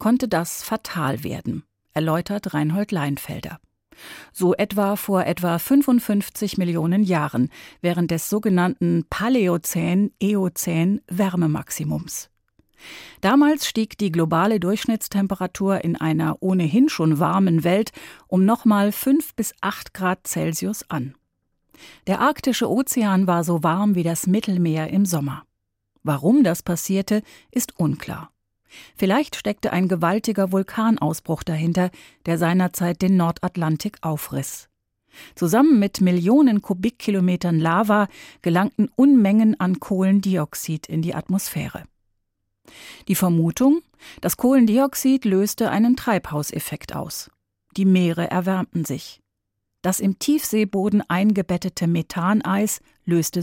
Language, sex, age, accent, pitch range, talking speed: German, female, 40-59, German, 165-210 Hz, 110 wpm